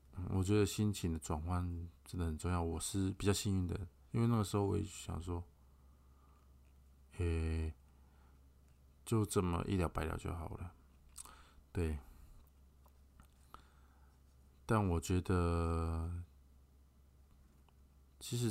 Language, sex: Chinese, male